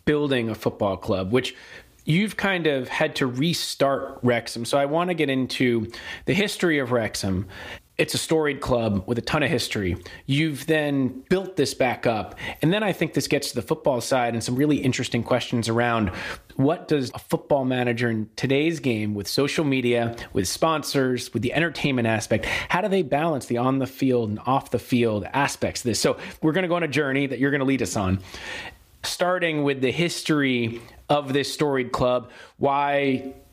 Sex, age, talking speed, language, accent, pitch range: male, 30-49, 195 wpm, English, American, 115-140 Hz